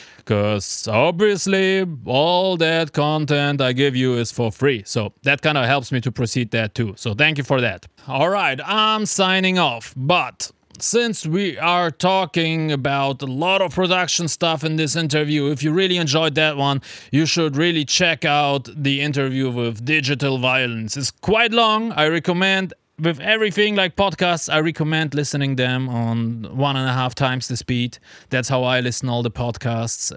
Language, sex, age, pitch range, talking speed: English, male, 20-39, 120-165 Hz, 180 wpm